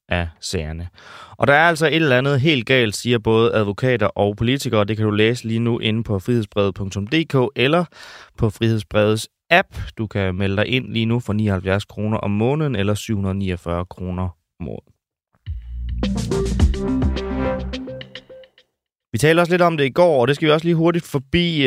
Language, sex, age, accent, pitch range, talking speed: Danish, male, 20-39, native, 100-140 Hz, 165 wpm